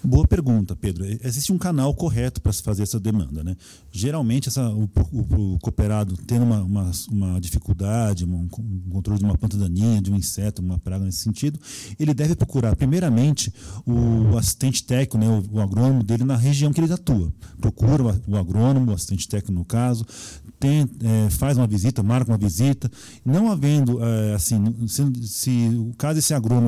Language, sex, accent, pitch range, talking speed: Portuguese, male, Brazilian, 105-130 Hz, 185 wpm